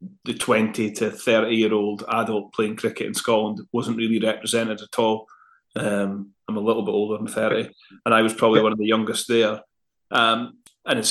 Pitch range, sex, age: 115-130 Hz, male, 30-49